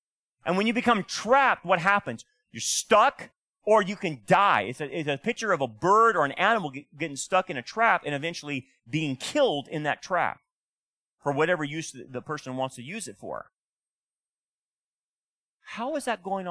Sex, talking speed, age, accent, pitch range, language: male, 180 wpm, 30-49, American, 110-175 Hz, English